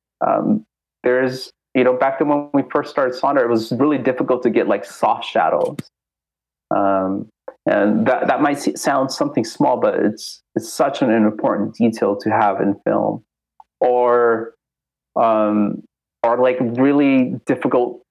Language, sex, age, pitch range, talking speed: English, male, 30-49, 105-120 Hz, 150 wpm